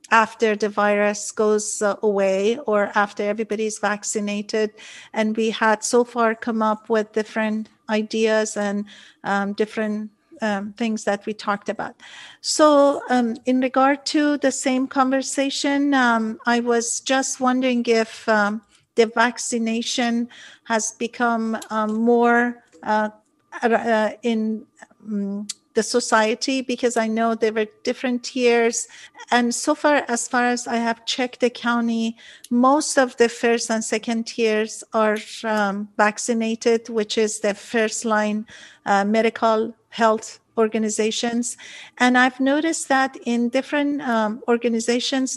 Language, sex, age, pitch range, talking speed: English, female, 50-69, 220-245 Hz, 130 wpm